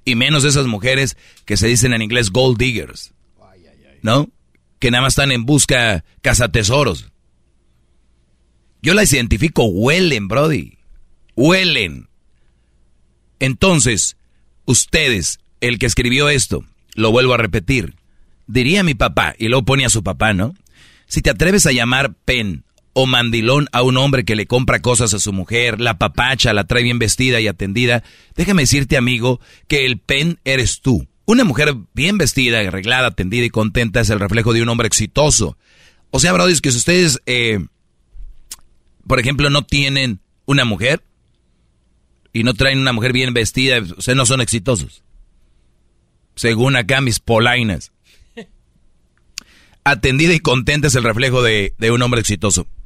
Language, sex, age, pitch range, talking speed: Spanish, male, 40-59, 105-135 Hz, 150 wpm